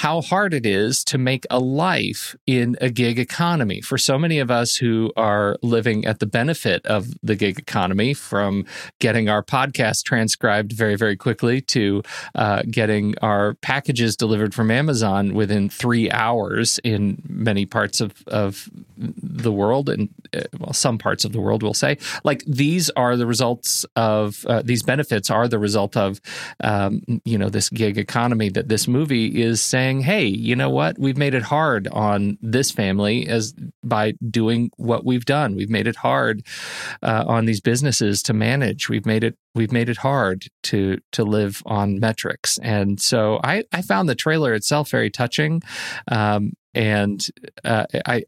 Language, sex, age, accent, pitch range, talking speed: English, male, 40-59, American, 105-130 Hz, 175 wpm